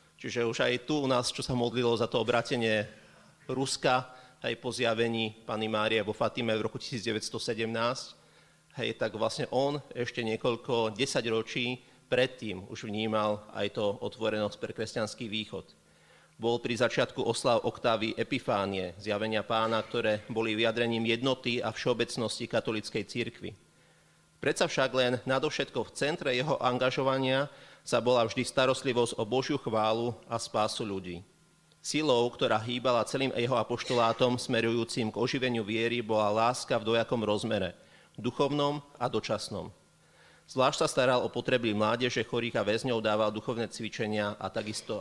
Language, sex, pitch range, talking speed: Slovak, male, 110-125 Hz, 140 wpm